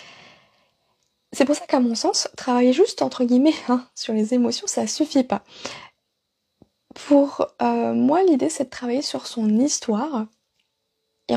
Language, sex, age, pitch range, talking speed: French, female, 20-39, 235-295 Hz, 150 wpm